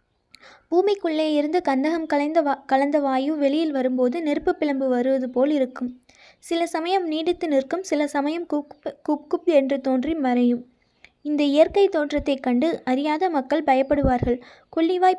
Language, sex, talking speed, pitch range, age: Tamil, female, 125 wpm, 260-320 Hz, 20-39